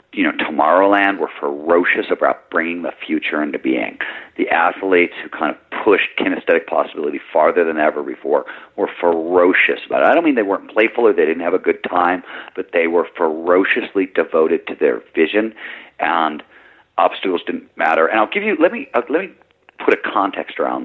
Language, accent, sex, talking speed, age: English, American, male, 185 wpm, 50-69